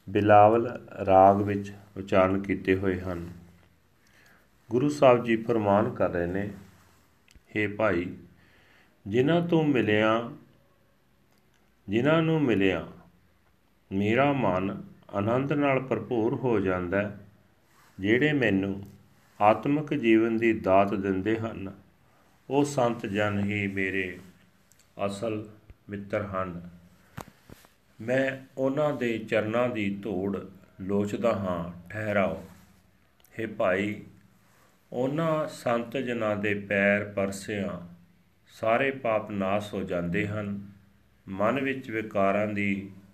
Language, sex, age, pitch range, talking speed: Punjabi, male, 40-59, 95-115 Hz, 100 wpm